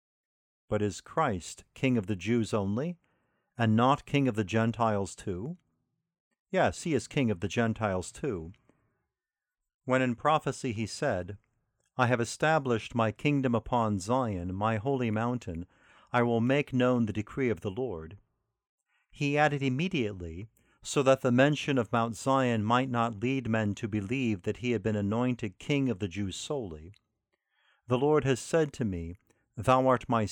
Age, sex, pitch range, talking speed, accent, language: 50-69, male, 105-135 Hz, 160 wpm, American, English